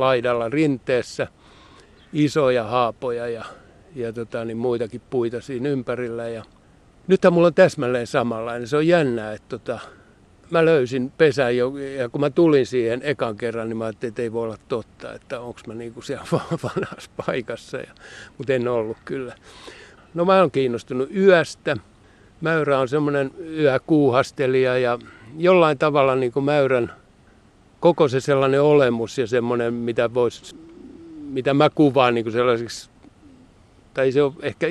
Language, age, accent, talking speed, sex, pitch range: Finnish, 60-79, native, 145 wpm, male, 120-150 Hz